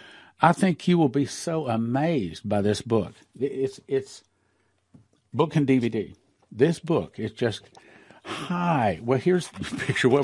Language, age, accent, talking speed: English, 60-79, American, 150 wpm